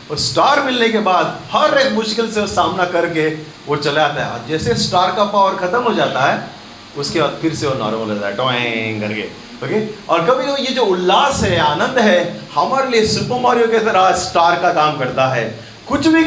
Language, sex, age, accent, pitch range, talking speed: Hindi, male, 40-59, native, 160-230 Hz, 115 wpm